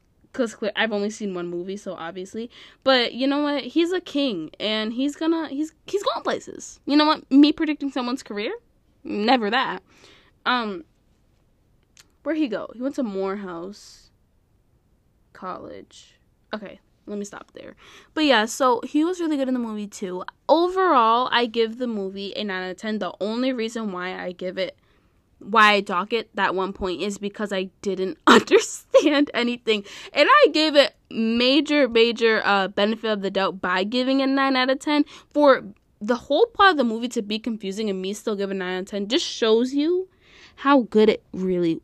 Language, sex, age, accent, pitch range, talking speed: English, female, 10-29, American, 200-290 Hz, 185 wpm